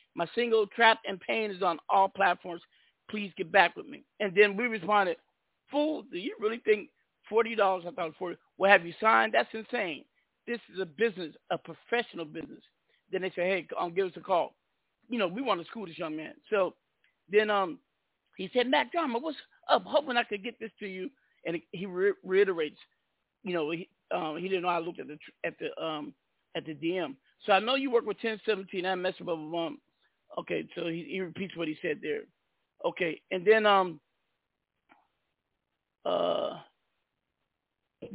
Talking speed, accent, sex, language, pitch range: 200 wpm, American, male, English, 175-215 Hz